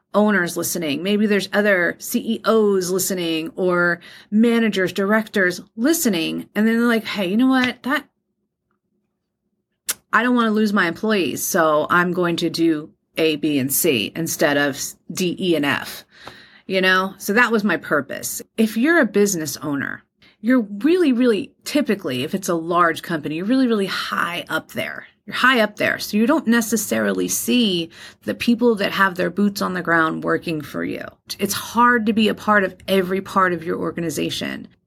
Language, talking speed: English, 175 wpm